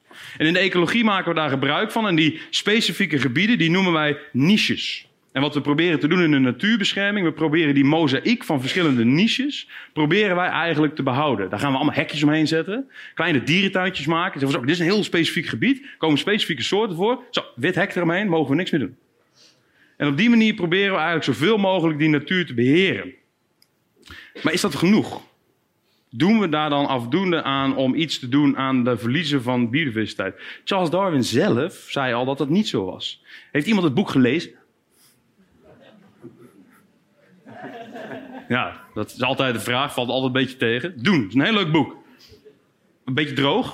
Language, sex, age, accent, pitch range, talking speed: Dutch, male, 30-49, Dutch, 140-195 Hz, 190 wpm